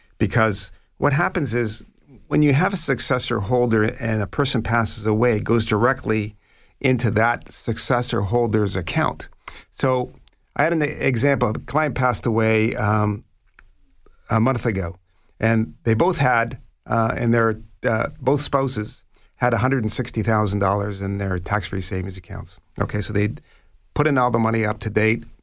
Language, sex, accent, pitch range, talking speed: English, male, American, 105-125 Hz, 165 wpm